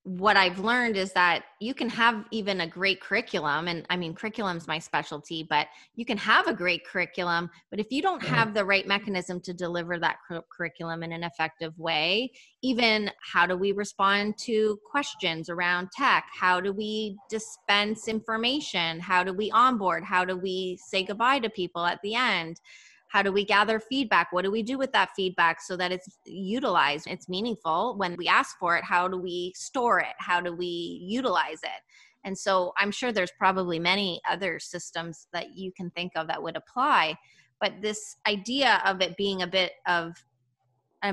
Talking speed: 190 wpm